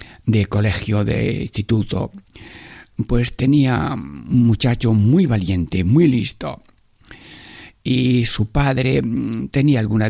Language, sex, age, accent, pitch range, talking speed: Spanish, male, 60-79, Spanish, 100-130 Hz, 100 wpm